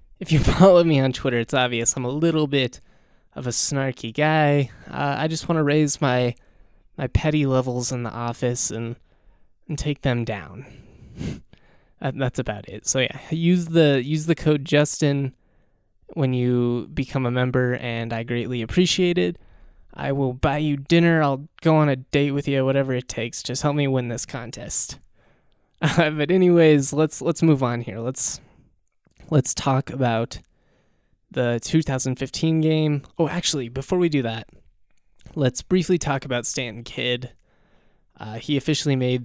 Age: 20-39